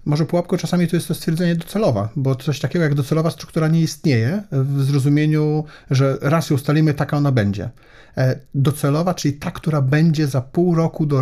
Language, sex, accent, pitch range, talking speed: Polish, male, native, 130-155 Hz, 180 wpm